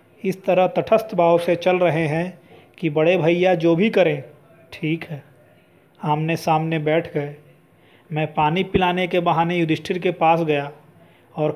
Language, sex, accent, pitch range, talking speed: Hindi, male, native, 150-175 Hz, 155 wpm